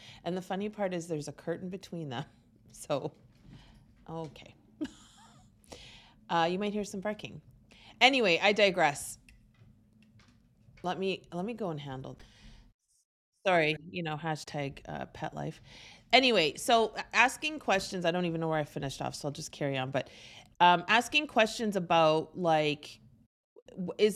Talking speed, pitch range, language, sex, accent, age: 145 wpm, 150-210 Hz, English, female, American, 30-49